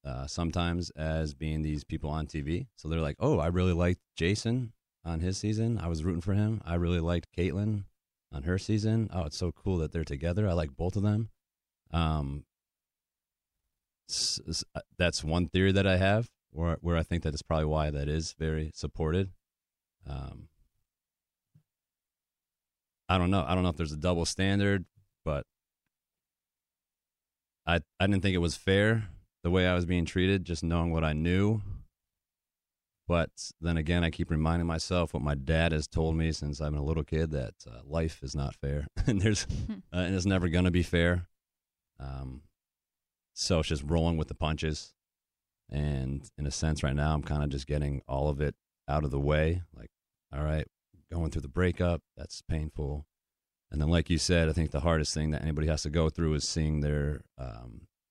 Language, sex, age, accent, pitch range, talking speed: English, male, 30-49, American, 75-90 Hz, 190 wpm